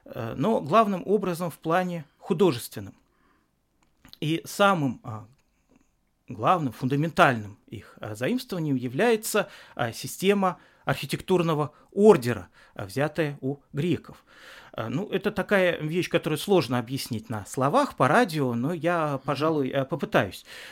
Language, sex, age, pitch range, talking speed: Russian, male, 40-59, 135-200 Hz, 100 wpm